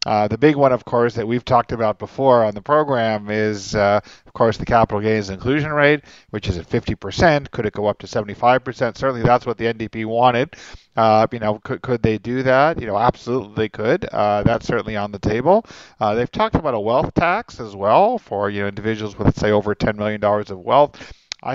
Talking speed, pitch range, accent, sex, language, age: 225 wpm, 105-125 Hz, American, male, English, 40-59